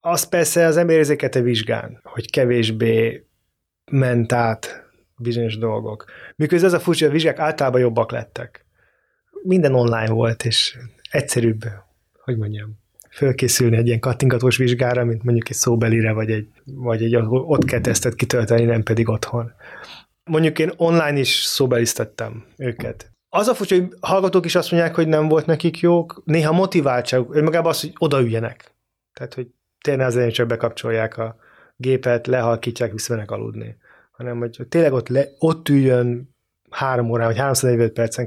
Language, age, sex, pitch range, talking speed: Hungarian, 20-39, male, 115-150 Hz, 150 wpm